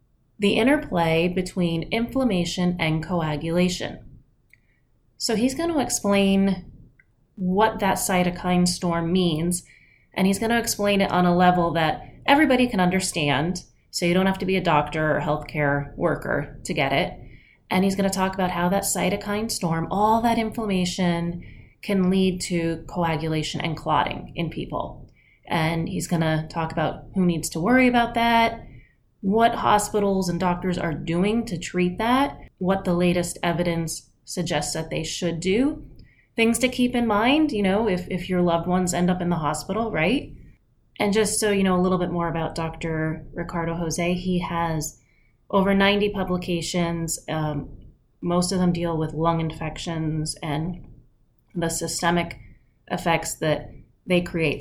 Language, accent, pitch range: English, American, 160-195 Hz